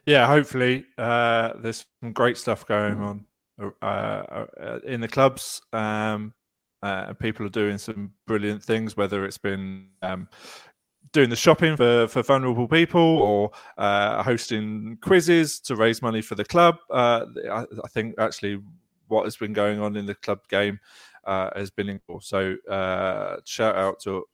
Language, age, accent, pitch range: English, 20-39, British, 105-140 Hz